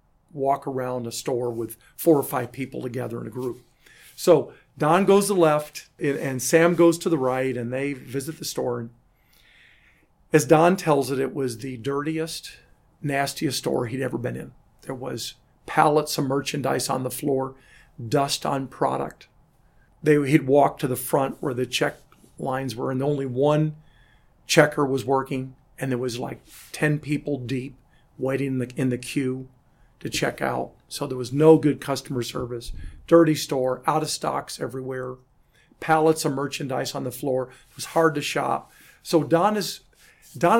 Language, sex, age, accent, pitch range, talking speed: English, male, 50-69, American, 130-155 Hz, 175 wpm